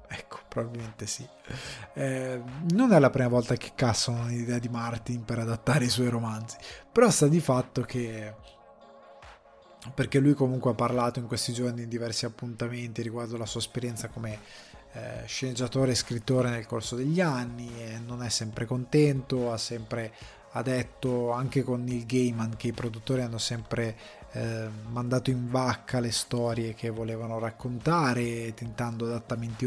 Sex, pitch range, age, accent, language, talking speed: male, 115-135 Hz, 20-39, native, Italian, 155 wpm